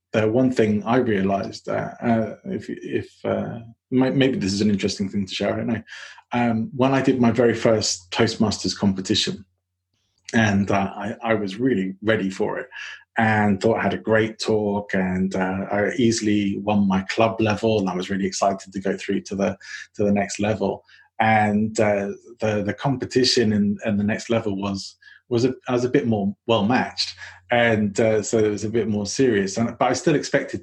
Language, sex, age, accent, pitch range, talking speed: English, male, 30-49, British, 100-120 Hz, 195 wpm